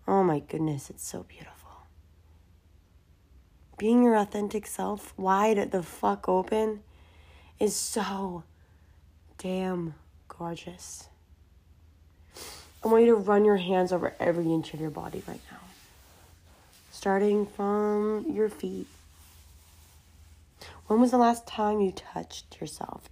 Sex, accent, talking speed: female, American, 120 wpm